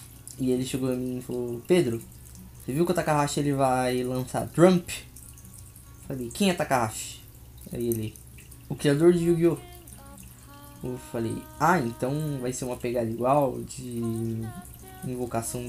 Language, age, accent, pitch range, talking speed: Portuguese, 10-29, Brazilian, 115-150 Hz, 145 wpm